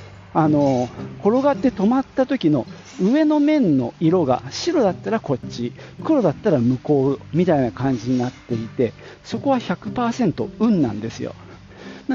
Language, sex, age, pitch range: Japanese, male, 50-69, 125-190 Hz